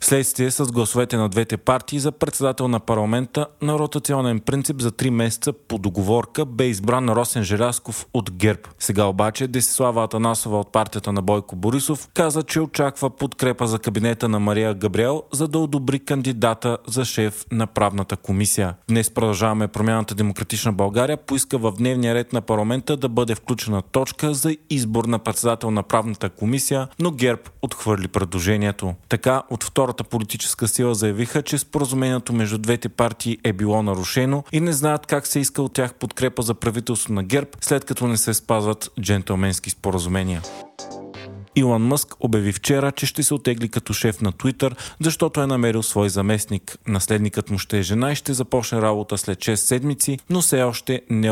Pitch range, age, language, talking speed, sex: 105-130 Hz, 30-49, Bulgarian, 165 wpm, male